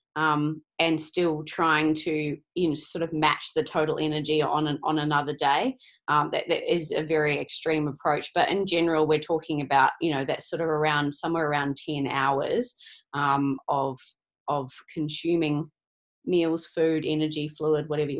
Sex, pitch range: female, 155-175 Hz